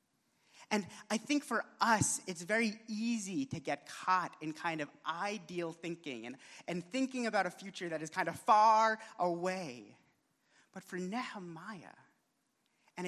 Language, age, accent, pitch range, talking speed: English, 30-49, American, 165-235 Hz, 145 wpm